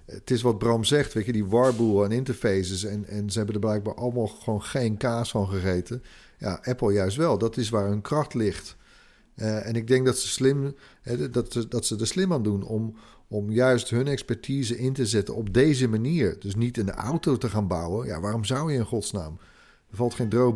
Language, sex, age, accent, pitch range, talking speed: Dutch, male, 40-59, Dutch, 105-125 Hz, 220 wpm